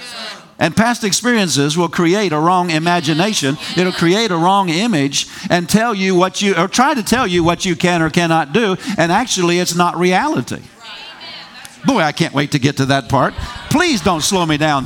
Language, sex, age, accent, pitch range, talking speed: English, male, 50-69, American, 145-185 Hz, 195 wpm